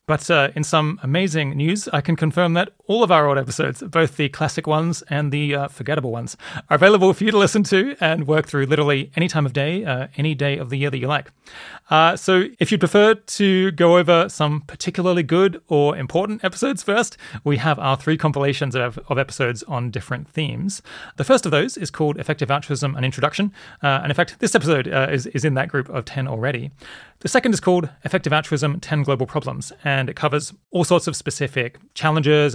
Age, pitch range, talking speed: 30-49, 130-170 Hz, 215 wpm